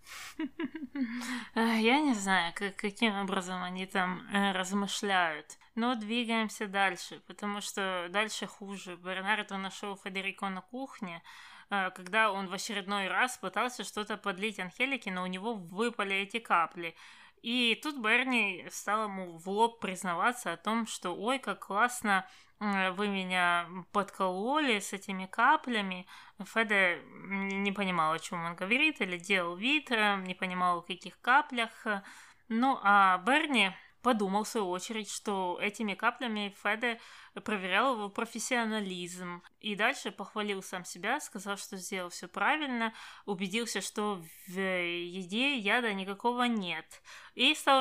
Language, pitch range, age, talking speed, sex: Russian, 190-230 Hz, 20-39, 130 wpm, female